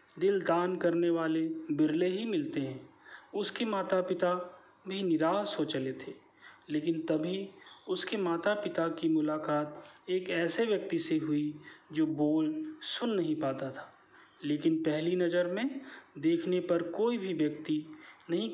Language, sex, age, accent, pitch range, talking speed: Hindi, male, 30-49, native, 160-195 Hz, 140 wpm